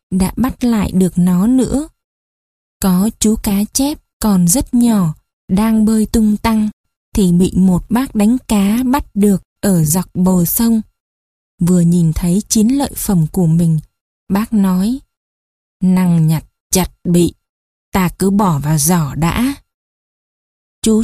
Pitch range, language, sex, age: 195-270 Hz, Vietnamese, female, 20-39